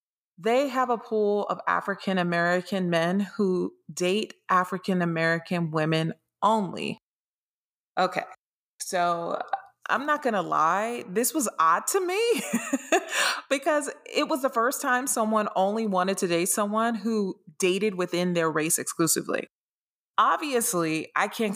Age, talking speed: 30-49, 125 wpm